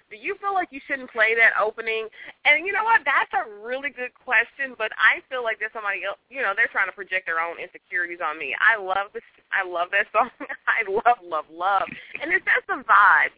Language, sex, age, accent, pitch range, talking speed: English, female, 20-39, American, 170-235 Hz, 235 wpm